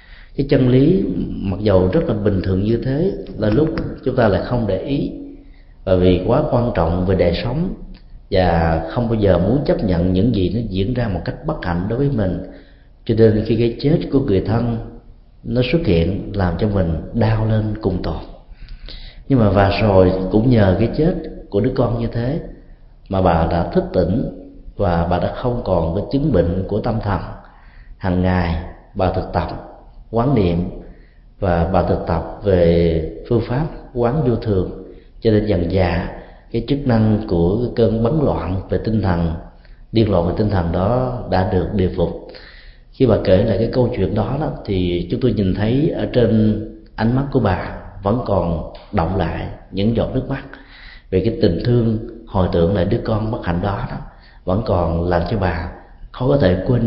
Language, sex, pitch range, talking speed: Vietnamese, male, 90-120 Hz, 195 wpm